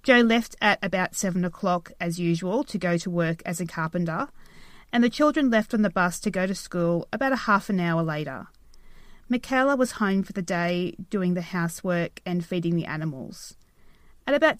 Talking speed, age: 195 wpm, 30-49